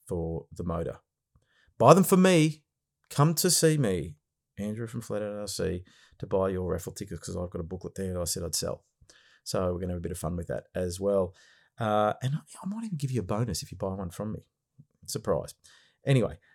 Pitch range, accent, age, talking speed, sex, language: 100-125 Hz, Australian, 30-49, 215 wpm, male, English